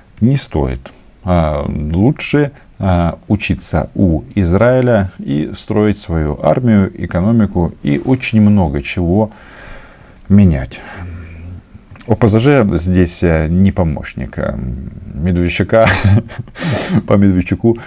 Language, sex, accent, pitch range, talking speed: Russian, male, native, 85-105 Hz, 75 wpm